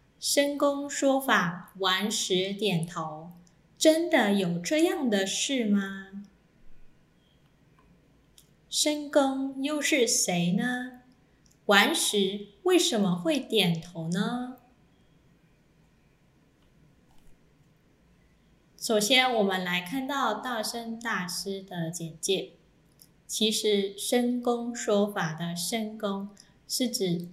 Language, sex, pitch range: Chinese, female, 175-240 Hz